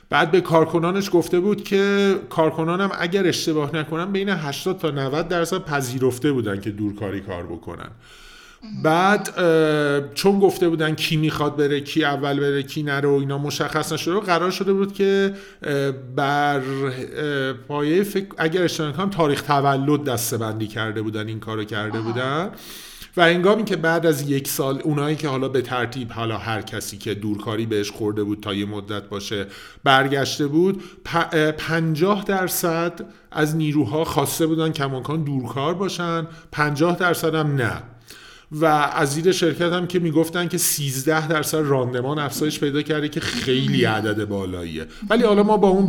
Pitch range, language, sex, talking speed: 125-170 Hz, Persian, male, 160 wpm